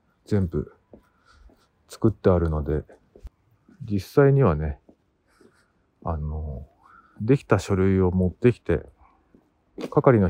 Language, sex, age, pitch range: Japanese, male, 50-69, 85-115 Hz